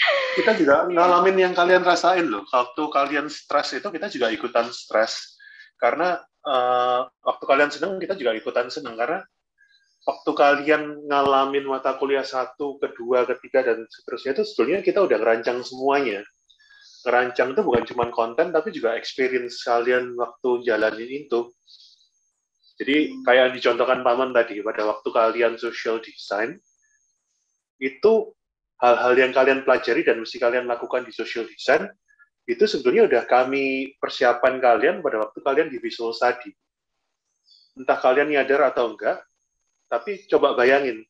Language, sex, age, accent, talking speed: Indonesian, male, 30-49, native, 140 wpm